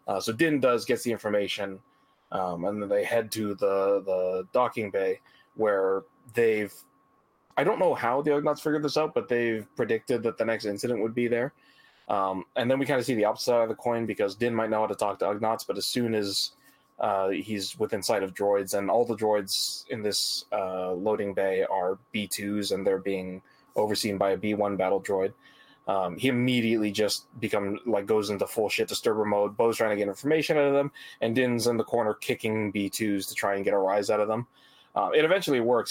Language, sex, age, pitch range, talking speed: English, male, 20-39, 100-125 Hz, 215 wpm